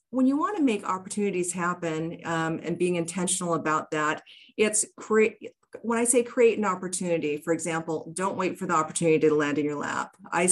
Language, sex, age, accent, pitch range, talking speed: English, female, 40-59, American, 160-200 Hz, 195 wpm